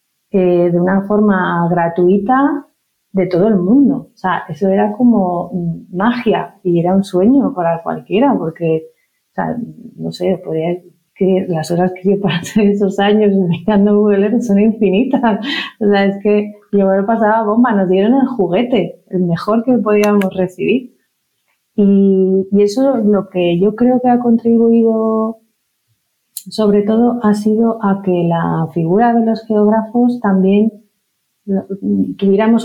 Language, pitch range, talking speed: Spanish, 170-220 Hz, 145 wpm